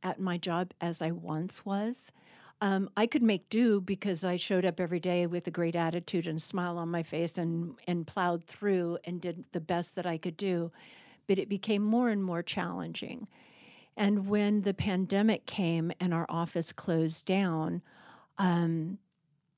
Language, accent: English, American